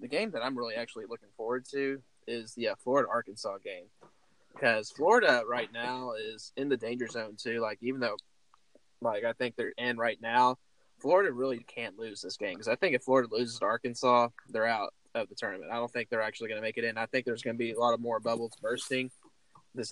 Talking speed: 230 wpm